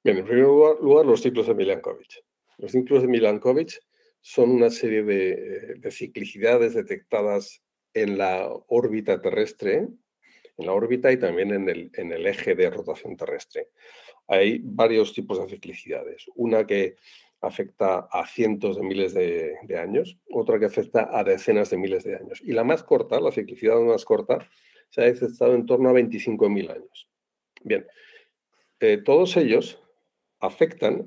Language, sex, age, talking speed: Spanish, male, 50-69, 155 wpm